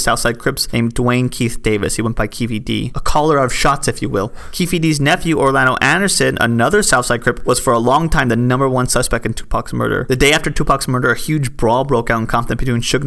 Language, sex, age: English, male, 30-49